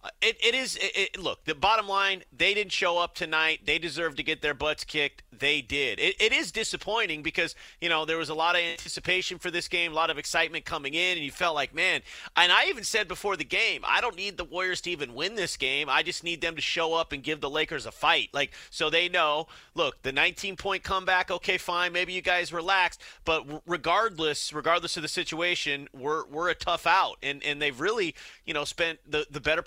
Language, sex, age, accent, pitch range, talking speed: English, male, 30-49, American, 150-180 Hz, 235 wpm